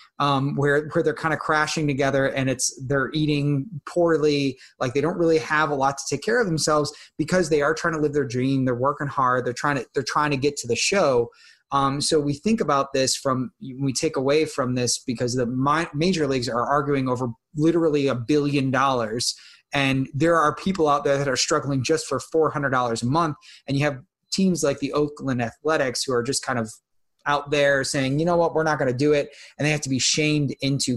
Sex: male